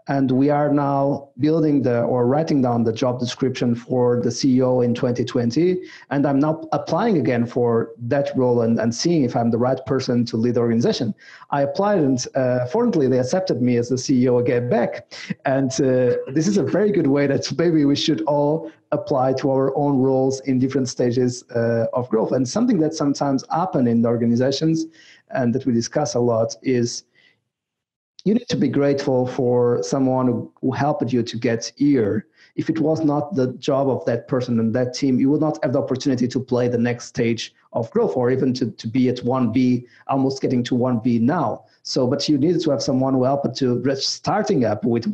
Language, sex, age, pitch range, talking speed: English, male, 50-69, 120-145 Hz, 205 wpm